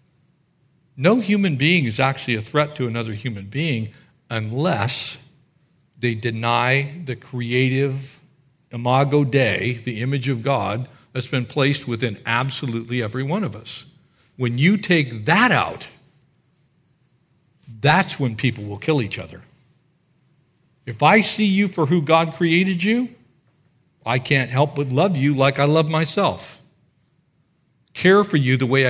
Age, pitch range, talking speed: 50-69, 130-170 Hz, 140 wpm